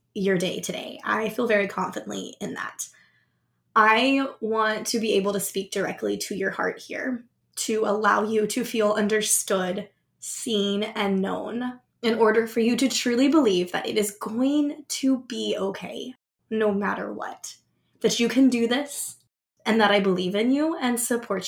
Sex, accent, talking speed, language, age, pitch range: female, American, 170 wpm, English, 20-39, 195-230 Hz